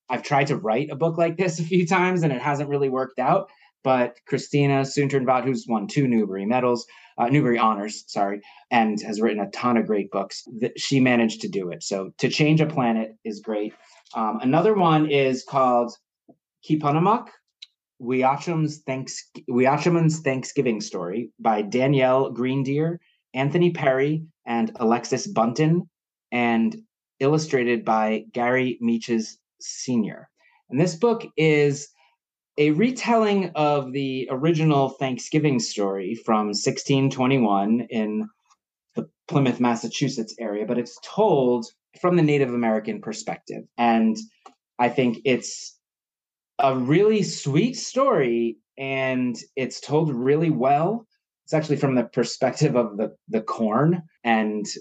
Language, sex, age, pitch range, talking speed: English, male, 30-49, 115-155 Hz, 135 wpm